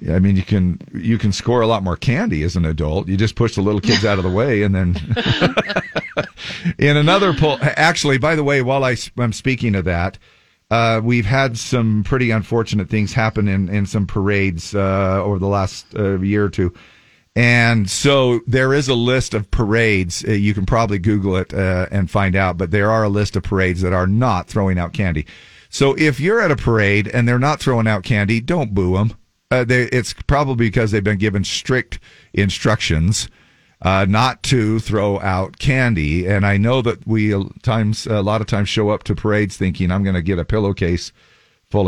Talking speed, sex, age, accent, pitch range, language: 200 wpm, male, 50-69, American, 95-120 Hz, English